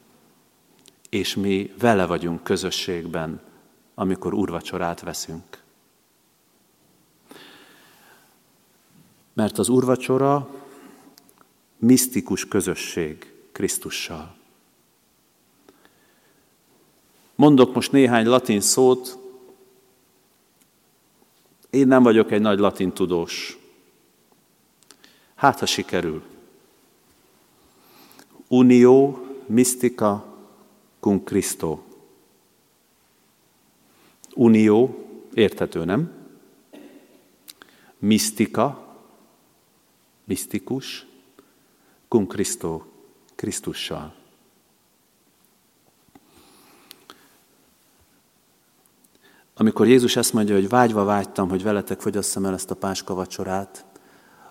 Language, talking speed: Hungarian, 55 wpm